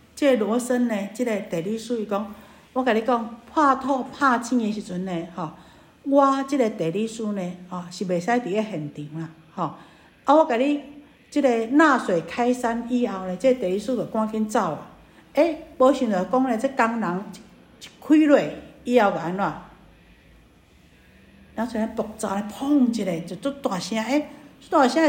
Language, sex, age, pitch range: Chinese, female, 50-69, 200-265 Hz